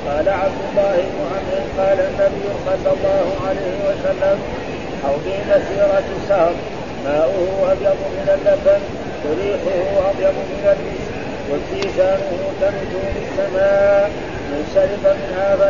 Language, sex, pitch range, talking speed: Arabic, male, 195-285 Hz, 120 wpm